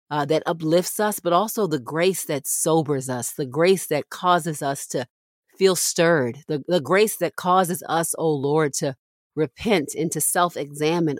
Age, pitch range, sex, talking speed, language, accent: 40-59, 150-175 Hz, female, 175 wpm, English, American